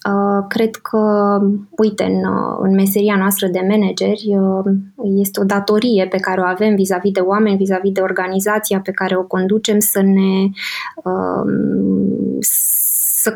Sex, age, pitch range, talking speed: female, 20-39, 195-215 Hz, 130 wpm